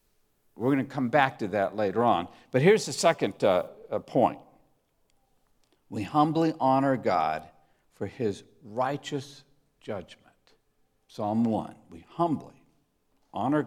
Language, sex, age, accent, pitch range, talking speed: English, male, 60-79, American, 115-180 Hz, 125 wpm